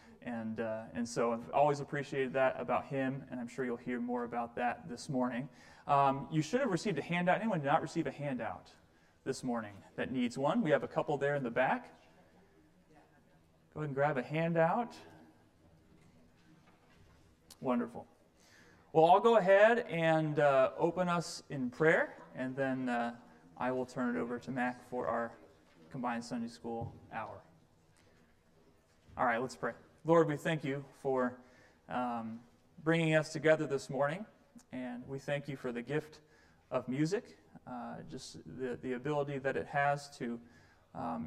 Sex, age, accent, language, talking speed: male, 30-49, American, English, 165 wpm